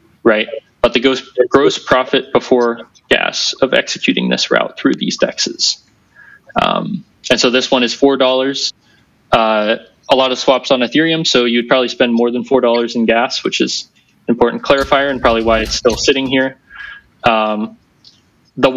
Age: 20-39